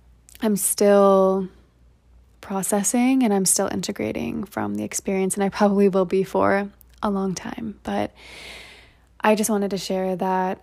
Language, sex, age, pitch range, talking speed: English, female, 20-39, 185-210 Hz, 145 wpm